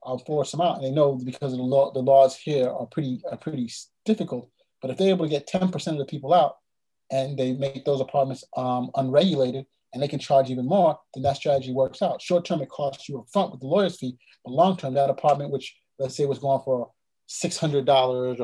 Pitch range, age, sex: 125-155 Hz, 30-49, male